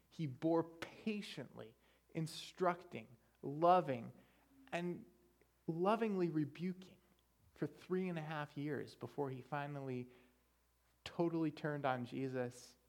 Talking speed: 100 wpm